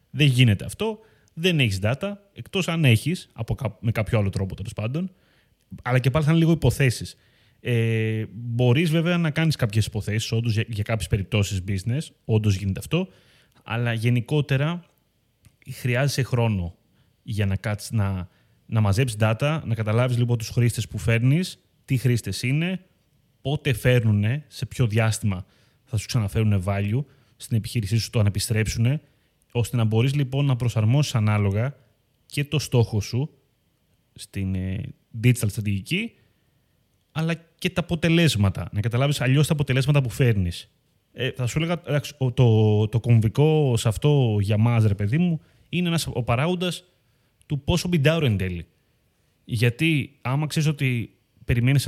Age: 30-49